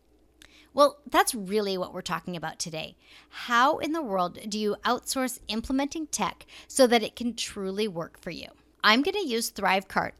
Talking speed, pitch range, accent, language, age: 175 wpm, 185-255 Hz, American, English, 40-59